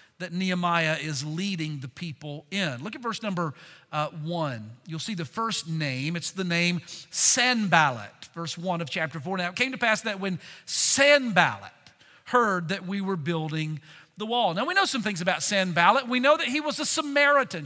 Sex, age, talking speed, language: male, 50-69, 190 wpm, English